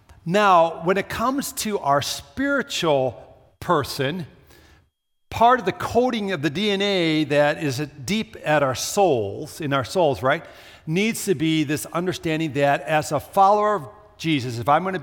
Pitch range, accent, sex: 115-165 Hz, American, male